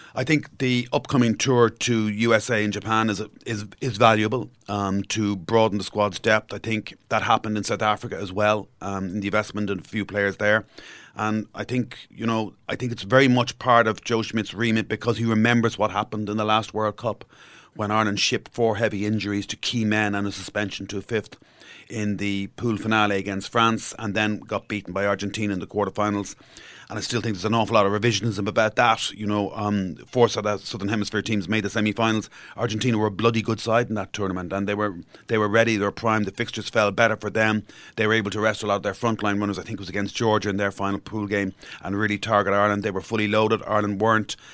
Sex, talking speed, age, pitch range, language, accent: male, 225 wpm, 30-49, 100-110 Hz, English, Irish